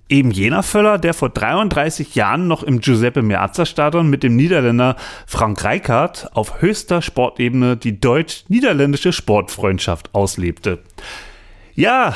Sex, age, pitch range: male, 30-49, 120-180 Hz